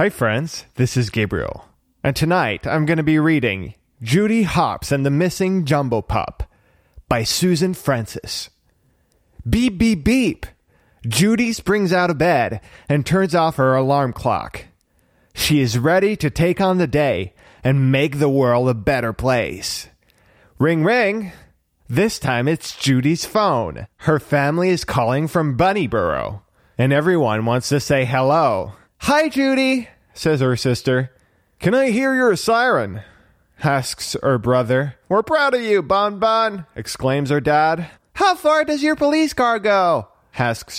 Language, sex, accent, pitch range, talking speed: French, male, American, 125-195 Hz, 145 wpm